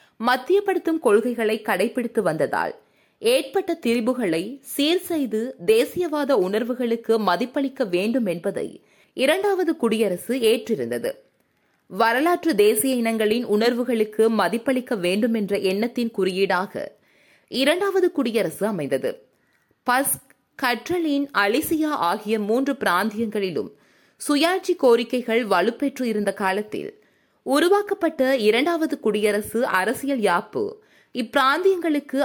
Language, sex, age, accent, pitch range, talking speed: Tamil, female, 20-39, native, 220-295 Hz, 85 wpm